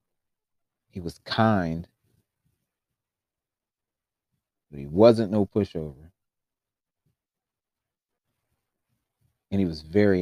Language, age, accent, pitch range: English, 30-49, American, 85-105 Hz